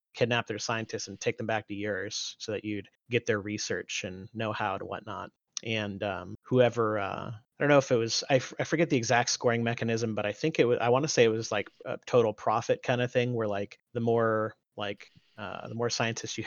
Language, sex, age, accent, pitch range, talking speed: English, male, 30-49, American, 105-120 Hz, 240 wpm